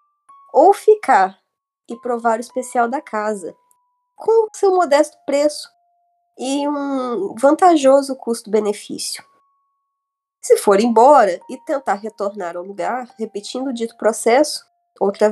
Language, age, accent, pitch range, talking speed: Portuguese, 20-39, Brazilian, 225-350 Hz, 115 wpm